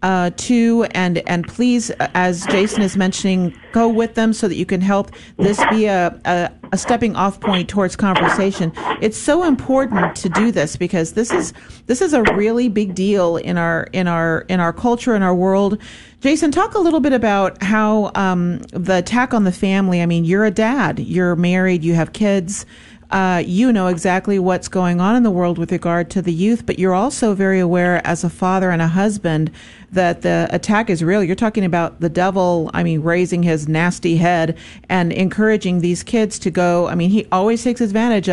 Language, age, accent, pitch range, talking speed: English, 40-59, American, 175-215 Hz, 200 wpm